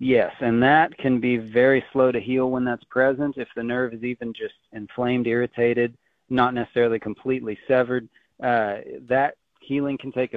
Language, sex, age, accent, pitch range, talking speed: English, male, 40-59, American, 105-120 Hz, 170 wpm